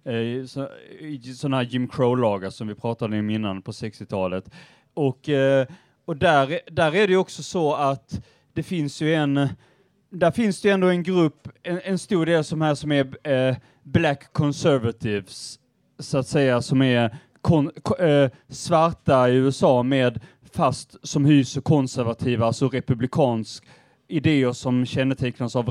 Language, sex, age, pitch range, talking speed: Swedish, male, 30-49, 125-155 Hz, 150 wpm